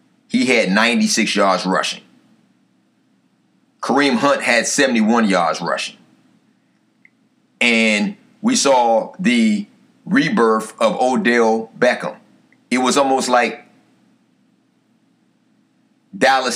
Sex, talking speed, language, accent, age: male, 85 wpm, English, American, 30-49